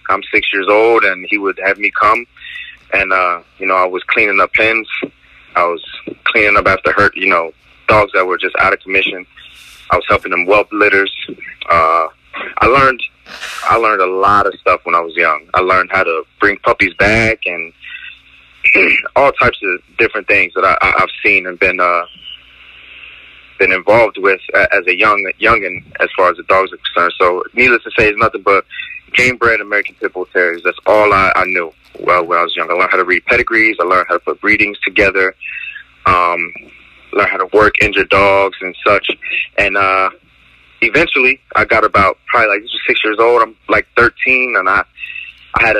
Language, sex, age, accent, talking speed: English, male, 20-39, American, 200 wpm